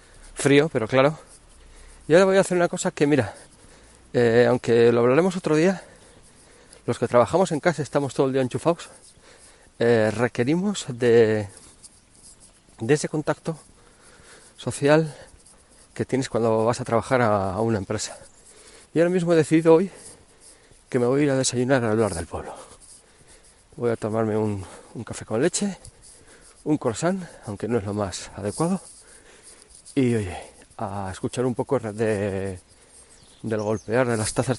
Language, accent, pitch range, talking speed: Spanish, Spanish, 110-140 Hz, 155 wpm